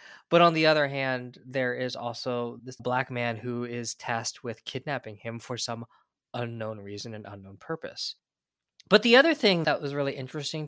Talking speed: 180 wpm